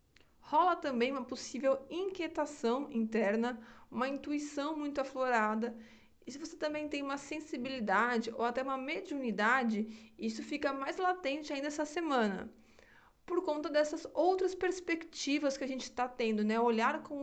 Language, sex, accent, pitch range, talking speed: Portuguese, female, Brazilian, 220-285 Hz, 145 wpm